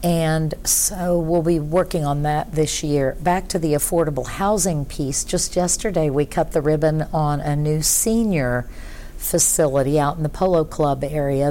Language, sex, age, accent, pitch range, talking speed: English, female, 50-69, American, 140-170 Hz, 165 wpm